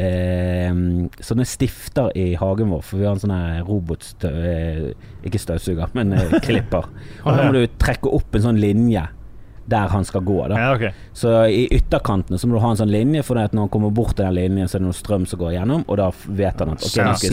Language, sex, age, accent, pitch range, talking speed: English, male, 30-49, Swedish, 90-110 Hz, 210 wpm